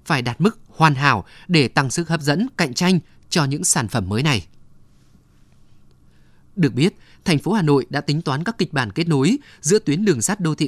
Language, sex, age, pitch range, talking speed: Vietnamese, male, 20-39, 140-180 Hz, 215 wpm